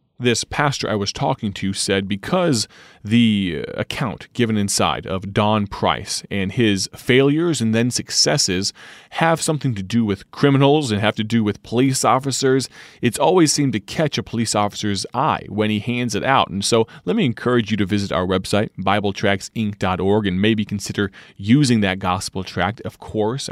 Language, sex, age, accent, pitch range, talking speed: English, male, 30-49, American, 100-125 Hz, 175 wpm